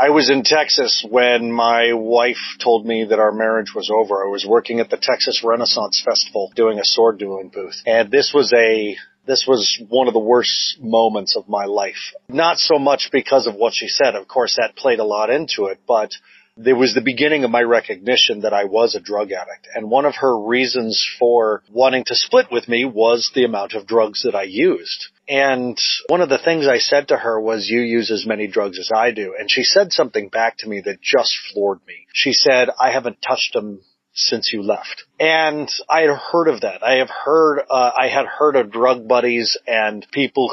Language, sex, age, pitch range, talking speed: English, male, 40-59, 110-135 Hz, 215 wpm